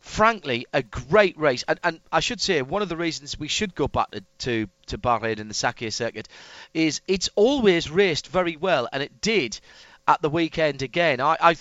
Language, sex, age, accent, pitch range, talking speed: English, male, 40-59, British, 140-185 Hz, 205 wpm